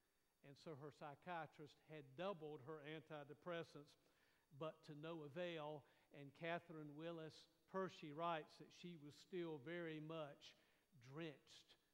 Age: 50-69